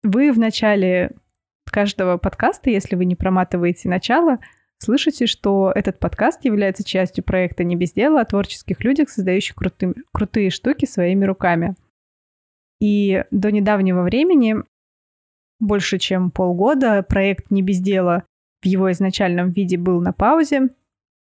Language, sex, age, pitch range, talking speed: Russian, female, 20-39, 185-230 Hz, 125 wpm